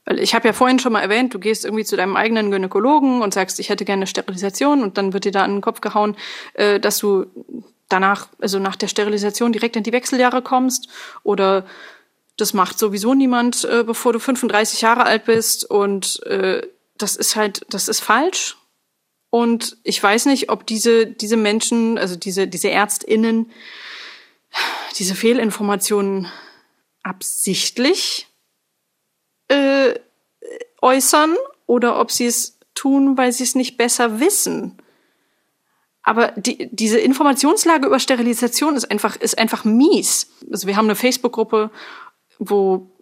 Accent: German